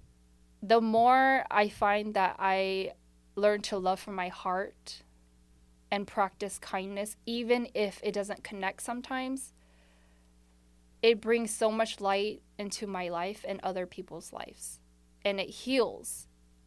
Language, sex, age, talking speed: English, female, 10-29, 130 wpm